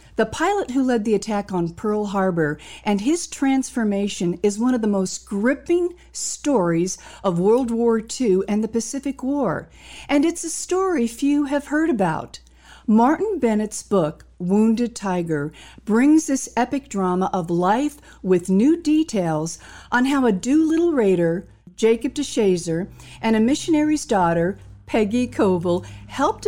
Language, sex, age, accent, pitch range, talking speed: English, female, 50-69, American, 185-255 Hz, 145 wpm